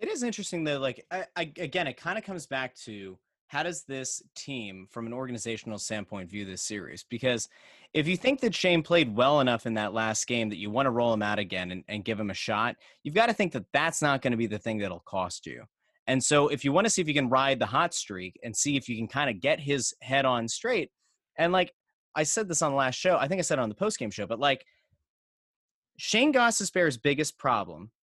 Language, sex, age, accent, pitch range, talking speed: English, male, 30-49, American, 115-165 Hz, 255 wpm